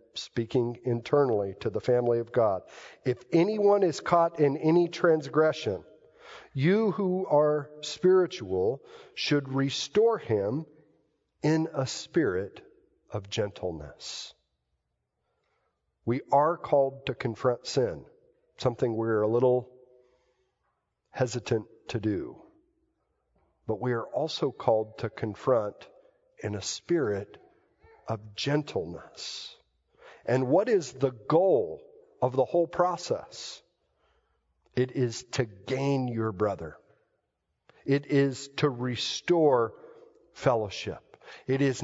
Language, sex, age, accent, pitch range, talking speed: English, male, 50-69, American, 125-215 Hz, 105 wpm